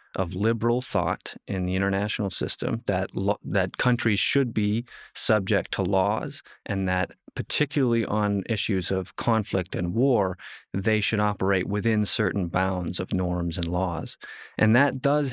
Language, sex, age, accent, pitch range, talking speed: English, male, 30-49, American, 95-115 Hz, 150 wpm